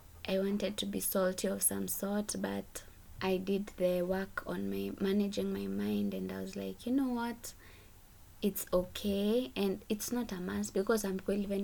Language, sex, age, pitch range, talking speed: English, female, 20-39, 175-200 Hz, 180 wpm